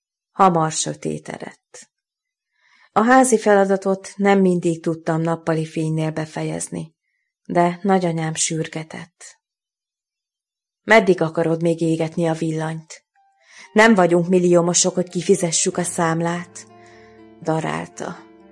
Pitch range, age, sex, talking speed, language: 160-195 Hz, 30-49, female, 95 wpm, Hungarian